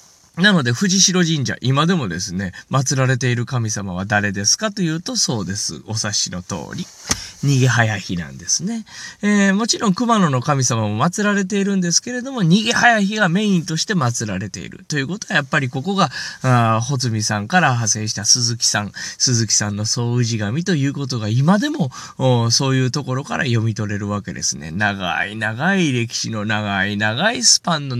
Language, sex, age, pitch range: Japanese, male, 20-39, 105-170 Hz